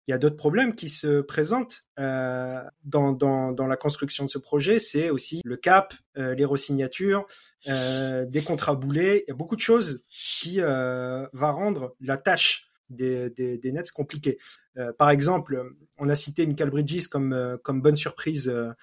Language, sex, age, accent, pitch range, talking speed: French, male, 30-49, French, 130-155 Hz, 185 wpm